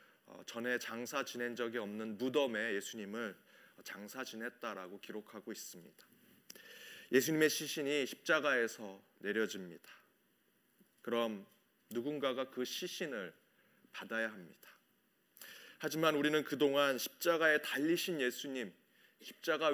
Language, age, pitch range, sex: Korean, 30-49, 125-170 Hz, male